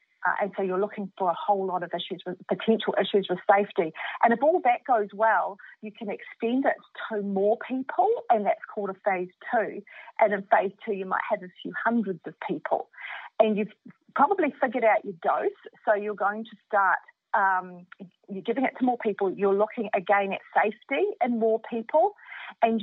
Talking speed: 195 wpm